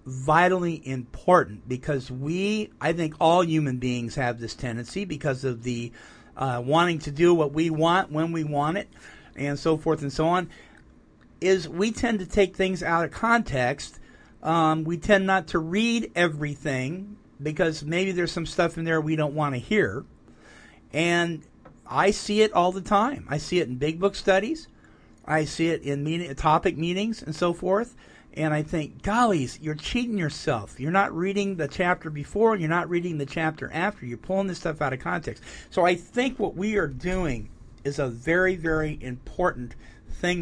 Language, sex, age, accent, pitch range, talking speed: English, male, 50-69, American, 135-180 Hz, 185 wpm